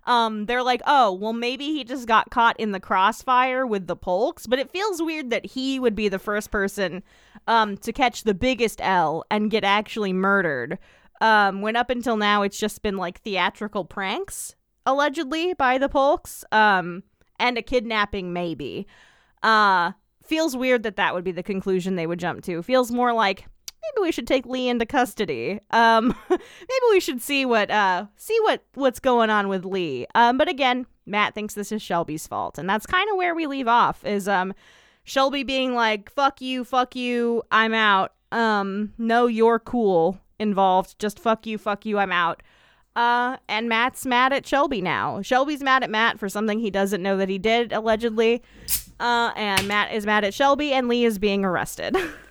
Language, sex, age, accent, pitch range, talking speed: English, female, 20-39, American, 205-255 Hz, 190 wpm